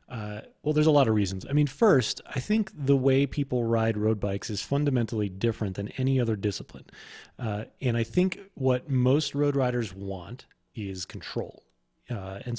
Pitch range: 110-140 Hz